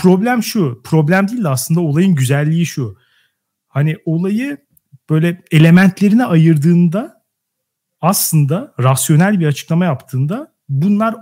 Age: 40-59